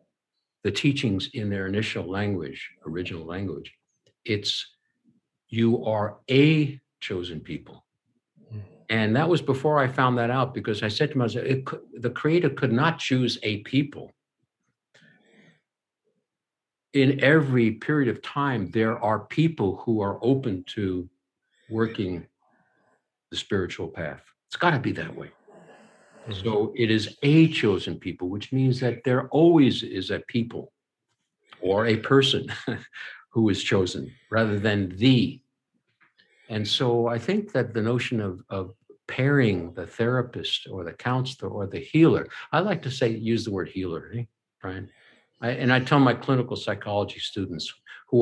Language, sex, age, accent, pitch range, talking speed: English, male, 60-79, American, 100-130 Hz, 145 wpm